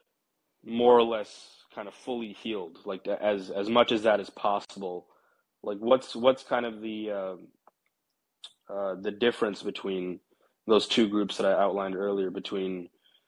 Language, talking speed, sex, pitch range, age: English, 155 wpm, male, 100-115 Hz, 20-39